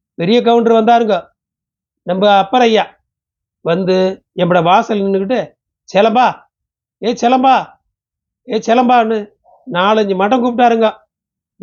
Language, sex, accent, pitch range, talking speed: Tamil, male, native, 185-220 Hz, 95 wpm